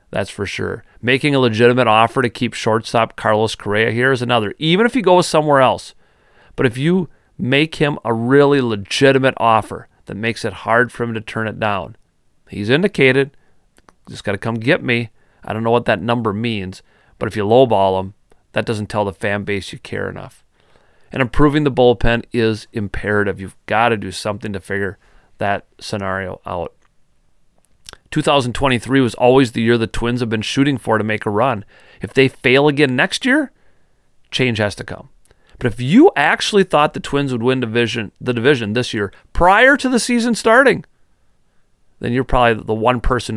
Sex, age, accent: male, 30-49, American